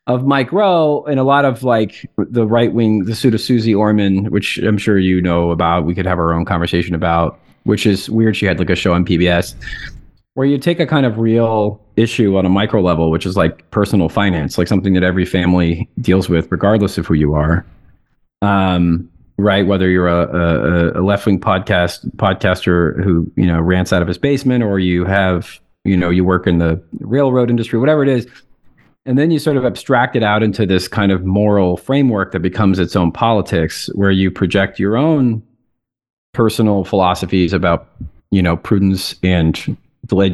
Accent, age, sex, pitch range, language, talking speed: American, 40-59, male, 90-115 Hz, English, 200 wpm